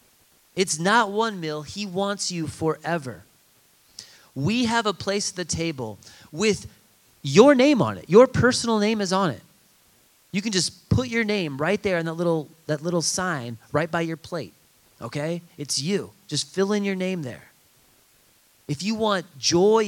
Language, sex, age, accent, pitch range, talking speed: English, male, 30-49, American, 135-190 Hz, 170 wpm